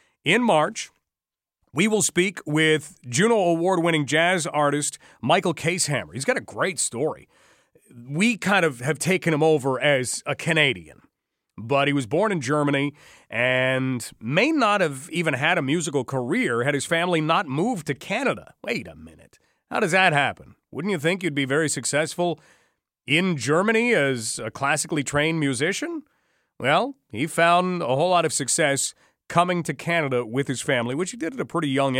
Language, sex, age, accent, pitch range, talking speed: English, male, 40-59, American, 140-175 Hz, 170 wpm